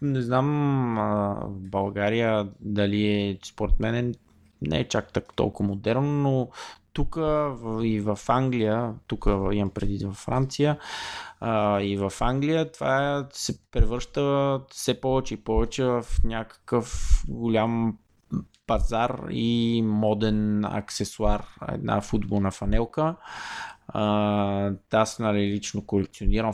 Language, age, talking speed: Bulgarian, 20-39, 110 wpm